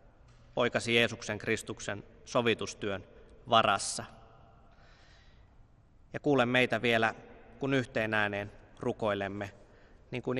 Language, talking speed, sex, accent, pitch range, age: Finnish, 80 wpm, male, native, 105-120 Hz, 20-39